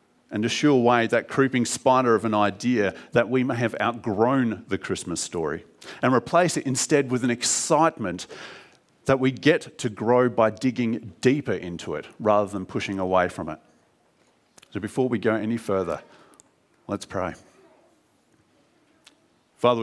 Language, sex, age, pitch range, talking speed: English, male, 40-59, 100-125 Hz, 150 wpm